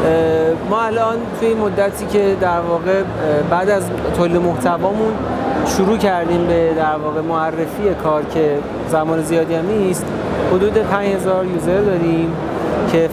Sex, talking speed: male, 130 wpm